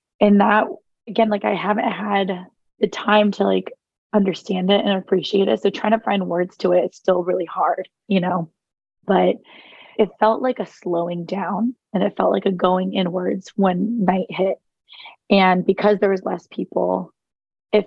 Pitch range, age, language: 185-210 Hz, 20-39, English